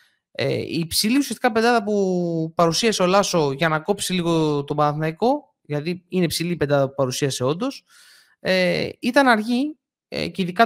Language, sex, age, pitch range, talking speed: Greek, male, 30-49, 165-235 Hz, 165 wpm